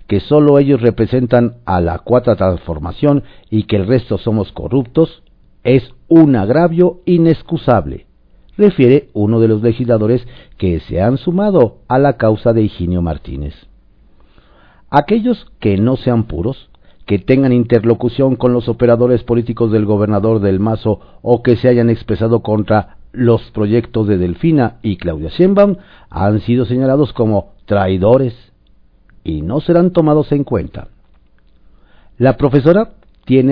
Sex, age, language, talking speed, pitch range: male, 50-69, Spanish, 135 wpm, 100-140 Hz